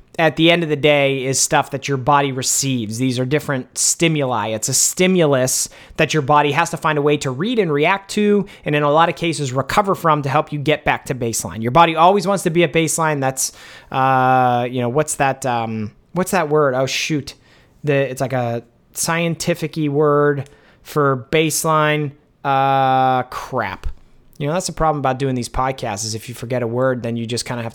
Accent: American